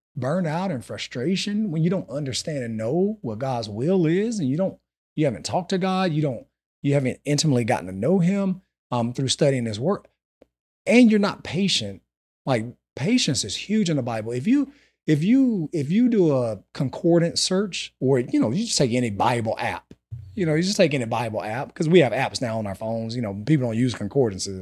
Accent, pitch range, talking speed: American, 115-185 Hz, 215 wpm